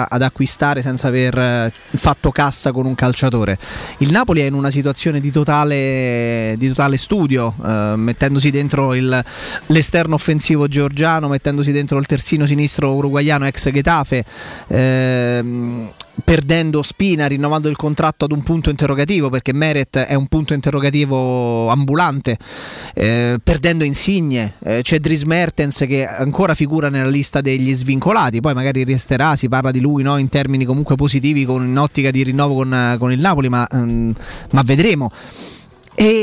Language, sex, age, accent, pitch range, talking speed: Italian, male, 20-39, native, 130-155 Hz, 145 wpm